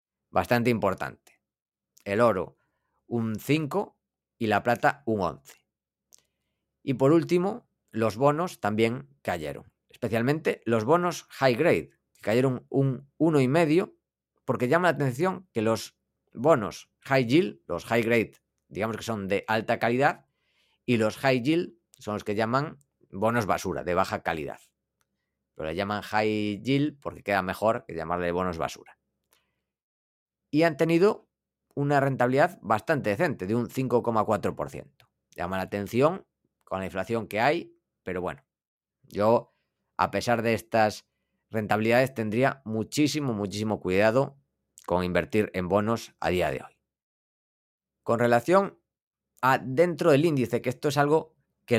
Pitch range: 100-140 Hz